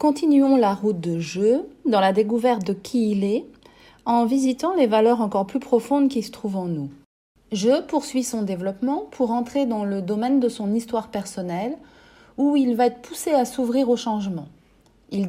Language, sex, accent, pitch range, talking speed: French, female, French, 210-270 Hz, 185 wpm